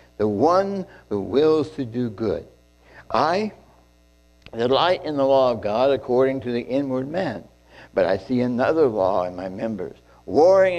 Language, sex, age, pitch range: English, male, 60-79, 95-140 Hz